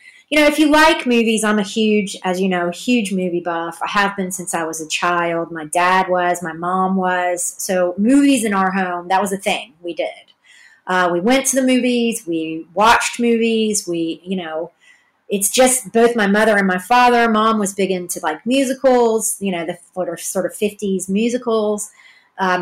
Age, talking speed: 30-49, 195 wpm